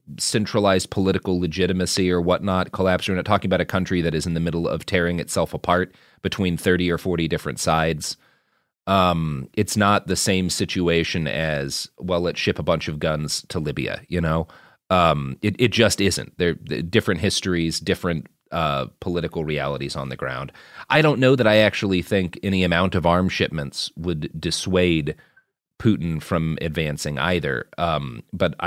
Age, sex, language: 30-49, male, English